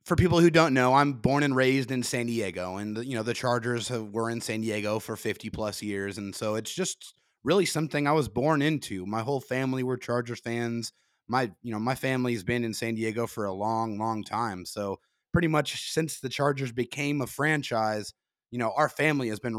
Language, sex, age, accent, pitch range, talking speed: English, male, 30-49, American, 110-130 Hz, 220 wpm